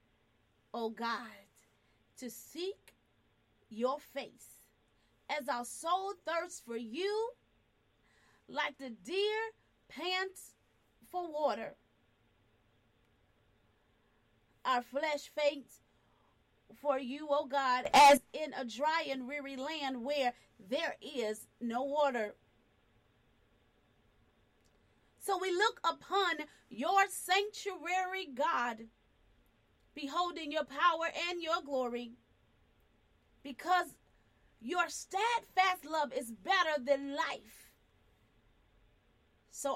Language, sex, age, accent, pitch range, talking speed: English, female, 30-49, American, 215-310 Hz, 90 wpm